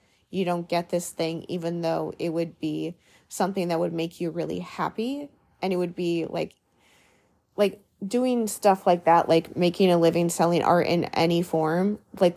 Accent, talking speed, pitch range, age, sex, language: American, 180 wpm, 165-190 Hz, 20-39, female, English